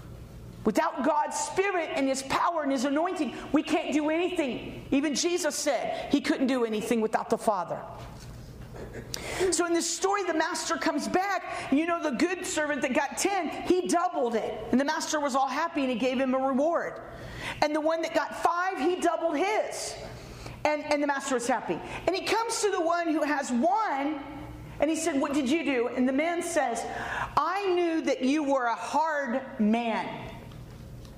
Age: 40-59